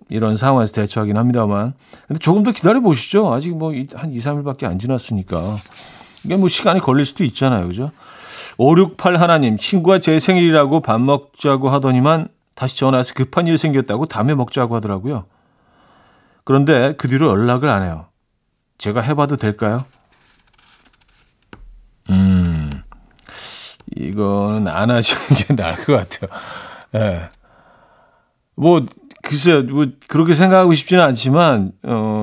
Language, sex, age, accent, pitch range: Korean, male, 40-59, native, 115-160 Hz